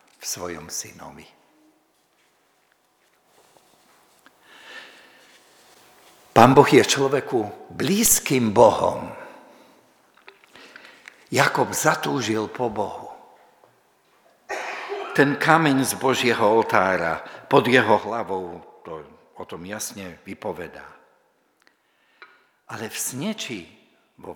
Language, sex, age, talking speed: Slovak, male, 60-79, 75 wpm